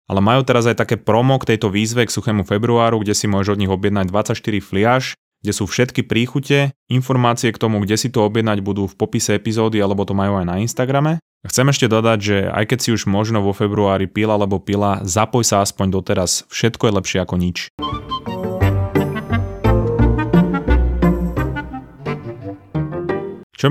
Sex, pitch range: male, 100-120 Hz